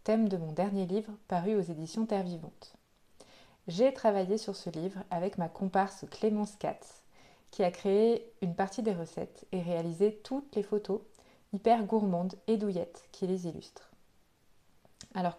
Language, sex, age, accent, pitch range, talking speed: French, female, 30-49, French, 180-220 Hz, 155 wpm